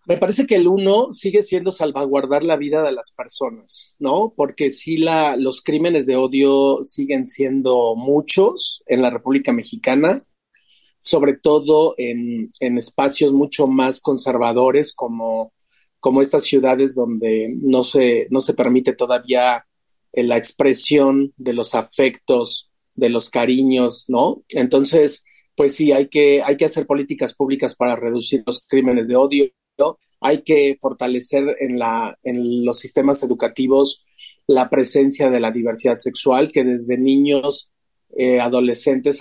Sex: male